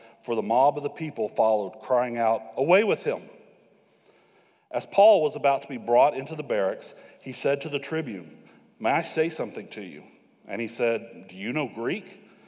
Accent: American